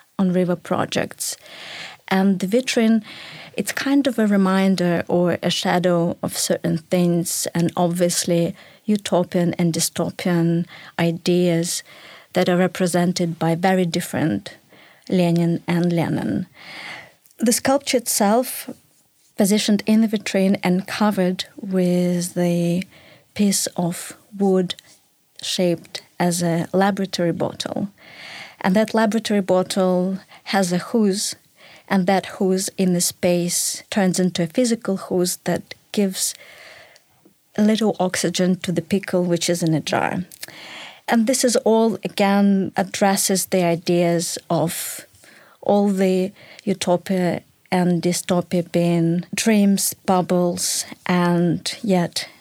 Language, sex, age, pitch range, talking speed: English, female, 30-49, 175-200 Hz, 115 wpm